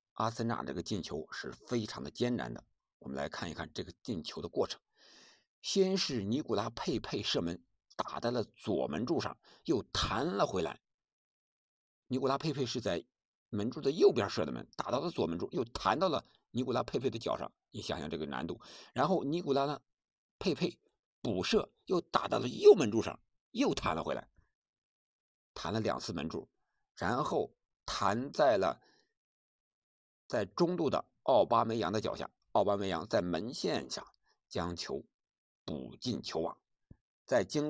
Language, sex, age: Chinese, male, 50-69